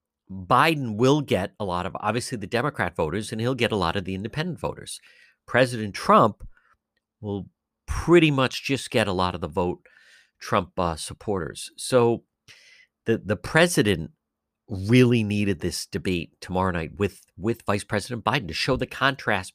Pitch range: 95-135 Hz